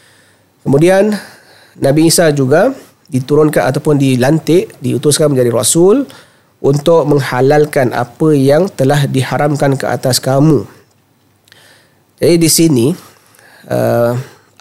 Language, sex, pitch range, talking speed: Malay, male, 130-150 Hz, 95 wpm